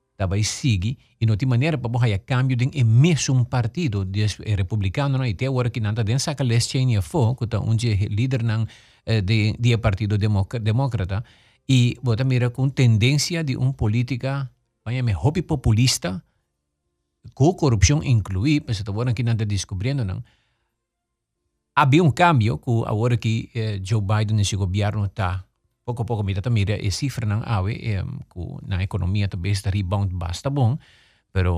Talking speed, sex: 165 wpm, male